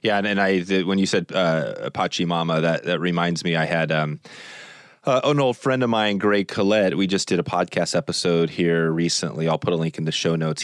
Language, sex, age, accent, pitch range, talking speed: English, male, 30-49, American, 80-95 Hz, 230 wpm